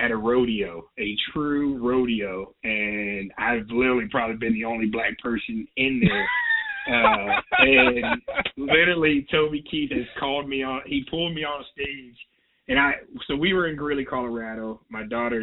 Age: 30-49